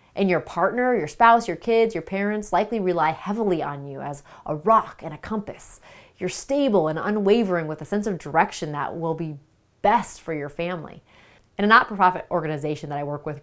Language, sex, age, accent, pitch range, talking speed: English, female, 30-49, American, 155-215 Hz, 195 wpm